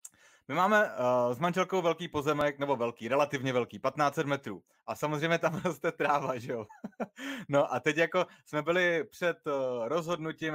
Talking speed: 165 wpm